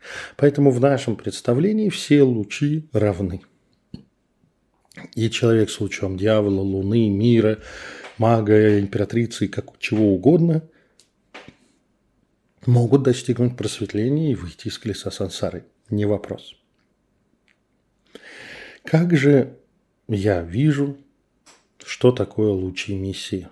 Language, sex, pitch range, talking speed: Russian, male, 100-140 Hz, 95 wpm